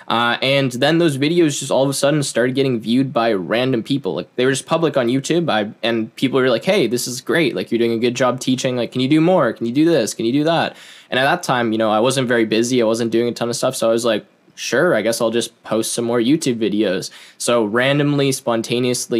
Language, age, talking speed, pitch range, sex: English, 10-29, 270 wpm, 115-130 Hz, male